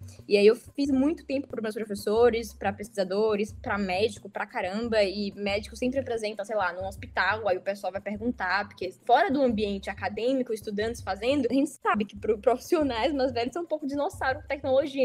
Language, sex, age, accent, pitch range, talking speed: Portuguese, female, 10-29, Brazilian, 210-265 Hz, 190 wpm